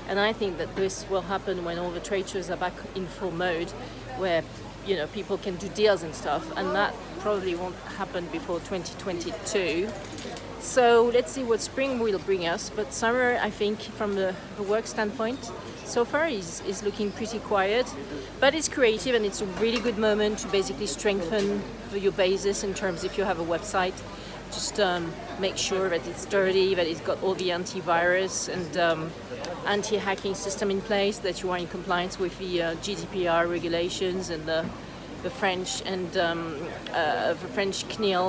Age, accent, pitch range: 40-59, French, 175-205 Hz